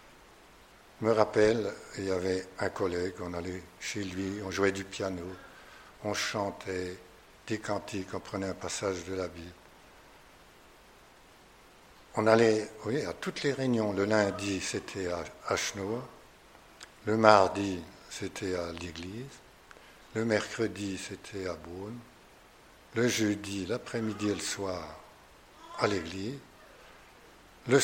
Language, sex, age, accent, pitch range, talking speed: French, male, 60-79, French, 95-110 Hz, 120 wpm